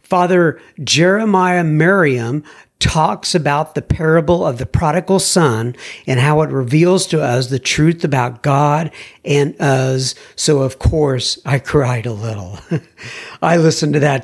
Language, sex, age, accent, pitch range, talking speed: English, male, 60-79, American, 135-180 Hz, 145 wpm